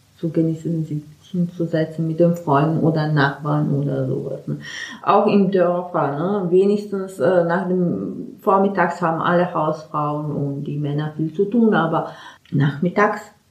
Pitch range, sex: 165-205 Hz, female